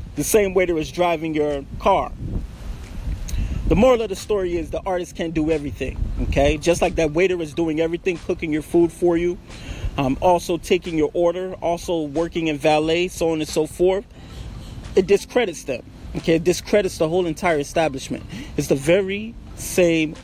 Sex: male